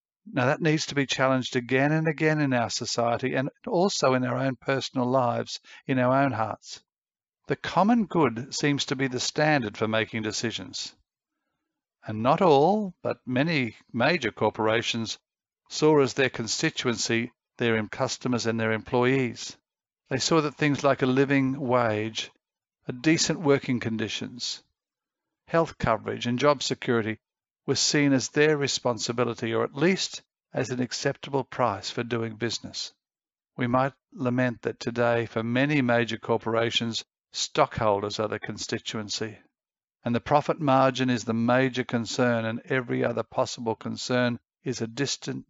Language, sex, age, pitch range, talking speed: English, male, 50-69, 115-135 Hz, 145 wpm